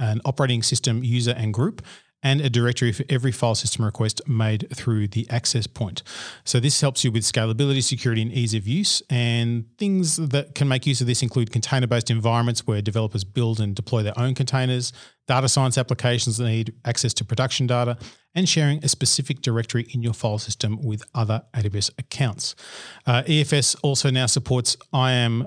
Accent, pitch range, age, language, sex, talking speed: Australian, 115-135 Hz, 40-59, English, male, 180 wpm